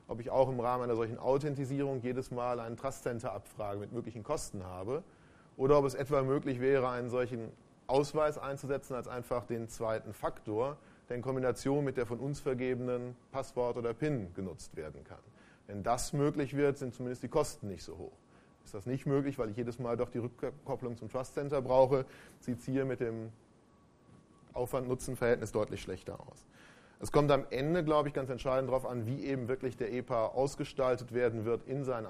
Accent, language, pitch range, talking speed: German, German, 120-135 Hz, 185 wpm